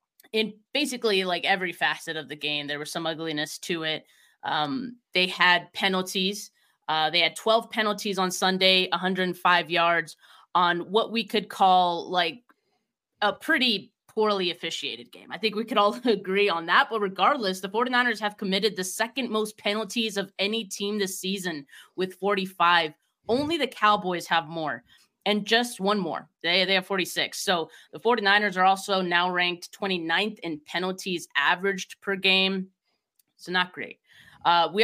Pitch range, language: 175-205 Hz, English